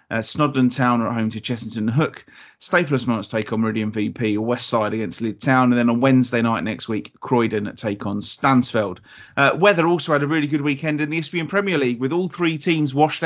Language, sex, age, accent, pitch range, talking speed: English, male, 30-49, British, 120-155 Hz, 215 wpm